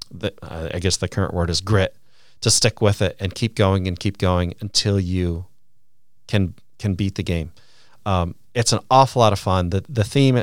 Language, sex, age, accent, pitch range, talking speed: English, male, 40-59, American, 95-110 Hz, 195 wpm